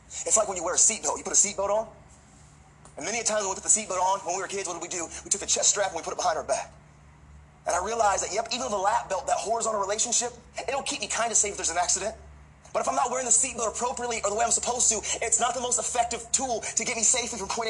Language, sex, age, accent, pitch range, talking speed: English, male, 30-49, American, 210-265 Hz, 305 wpm